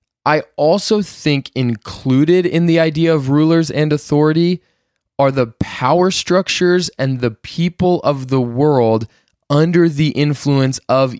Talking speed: 135 wpm